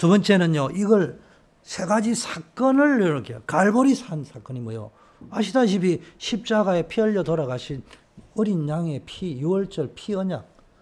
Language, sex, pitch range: Korean, male, 150-215 Hz